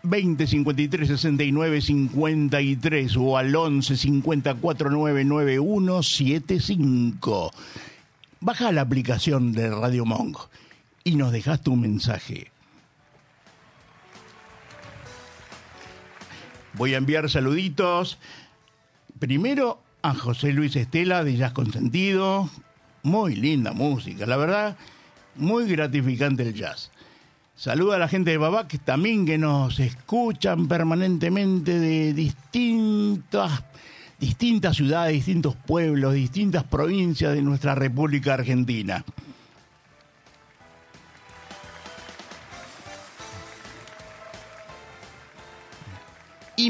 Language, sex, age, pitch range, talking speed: Spanish, male, 60-79, 130-170 Hz, 80 wpm